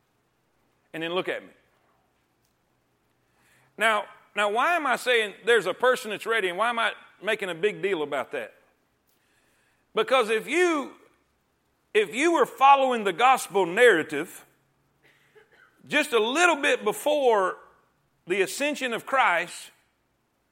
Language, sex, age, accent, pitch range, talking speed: English, male, 50-69, American, 235-315 Hz, 130 wpm